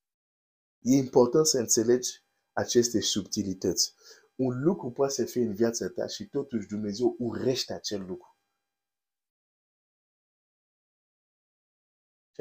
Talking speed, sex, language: 100 wpm, male, Romanian